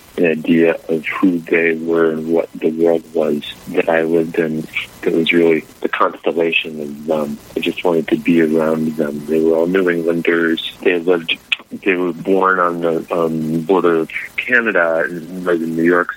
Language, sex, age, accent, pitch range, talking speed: English, male, 30-49, American, 80-90 Hz, 185 wpm